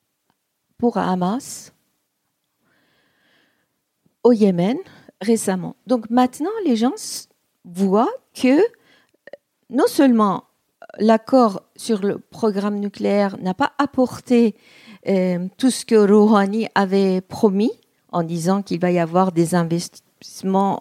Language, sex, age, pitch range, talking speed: French, female, 50-69, 185-230 Hz, 105 wpm